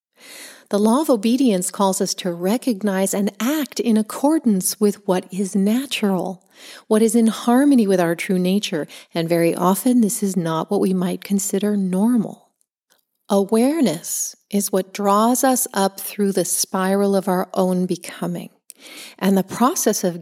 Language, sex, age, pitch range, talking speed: English, female, 40-59, 185-225 Hz, 155 wpm